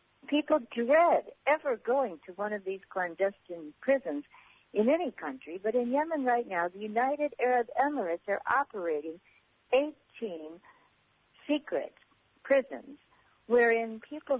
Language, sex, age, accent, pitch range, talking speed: English, female, 60-79, American, 175-270 Hz, 120 wpm